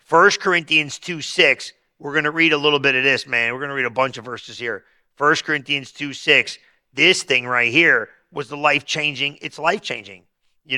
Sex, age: male, 50-69